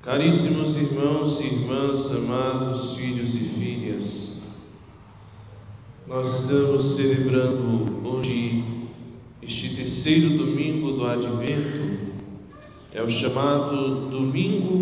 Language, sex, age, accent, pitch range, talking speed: Portuguese, male, 40-59, Brazilian, 115-150 Hz, 85 wpm